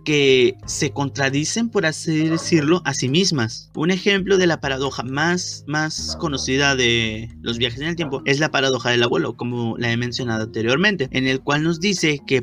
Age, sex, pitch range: 30-49, male, 130-170 Hz